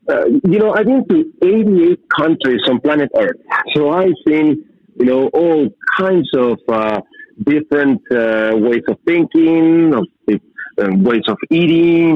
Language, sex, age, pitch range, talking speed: English, male, 50-69, 145-230 Hz, 150 wpm